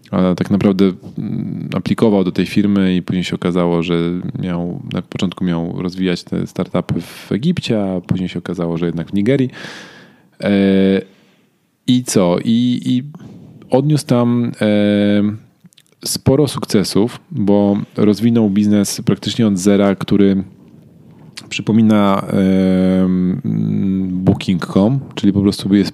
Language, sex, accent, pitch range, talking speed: Polish, male, native, 95-110 Hz, 115 wpm